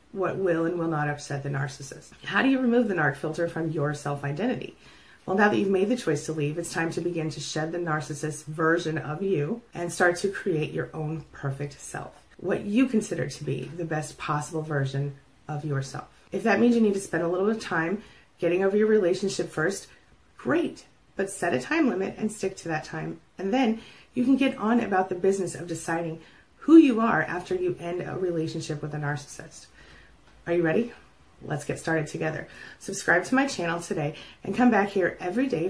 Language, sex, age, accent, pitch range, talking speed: English, female, 30-49, American, 155-195 Hz, 210 wpm